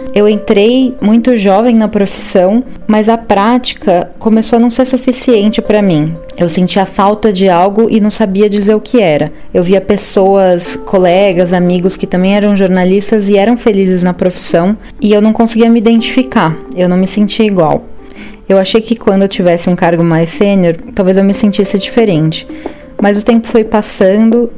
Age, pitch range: 20-39, 185-225 Hz